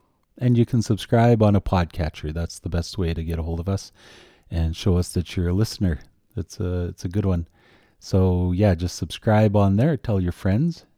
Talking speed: 215 wpm